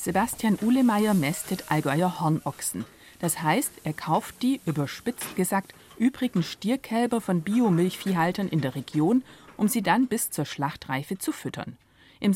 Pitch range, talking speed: 150-225 Hz, 135 wpm